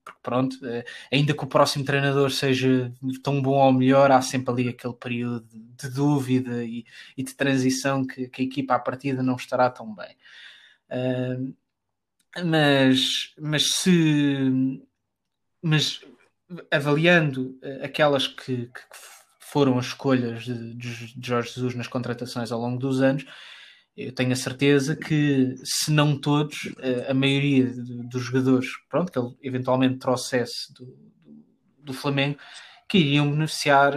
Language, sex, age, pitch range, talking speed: Portuguese, male, 20-39, 125-140 Hz, 140 wpm